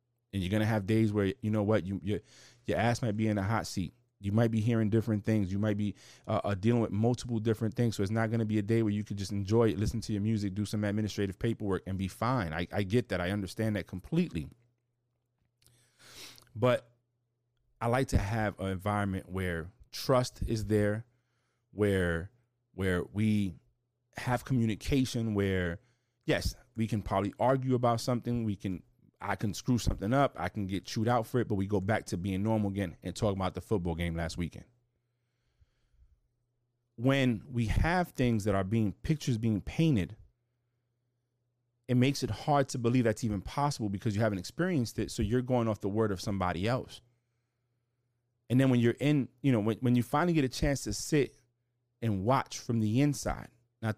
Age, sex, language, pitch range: 30-49, male, English, 100-120 Hz